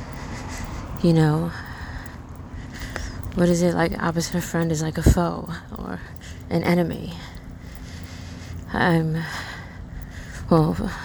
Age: 20-39